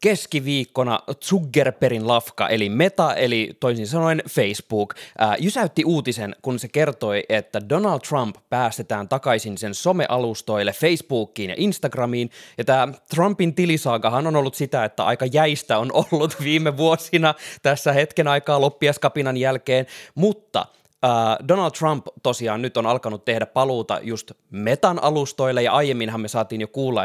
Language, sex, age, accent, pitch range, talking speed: Finnish, male, 20-39, native, 115-150 Hz, 135 wpm